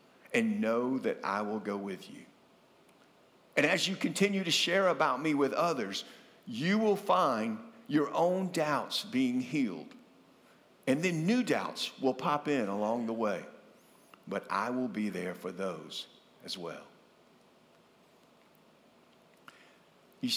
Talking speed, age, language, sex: 135 wpm, 50-69, English, male